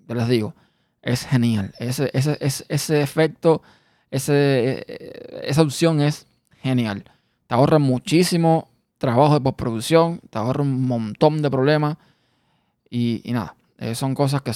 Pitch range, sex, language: 125-150 Hz, male, Spanish